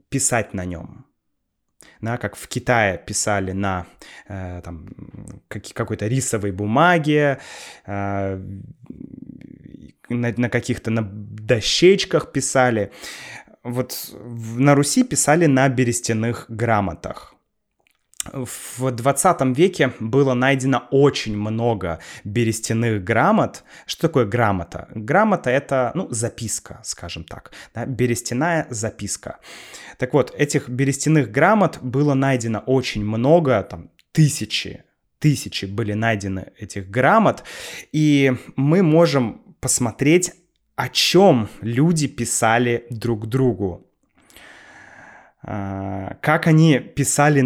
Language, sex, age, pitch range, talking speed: Russian, male, 20-39, 105-140 Hz, 105 wpm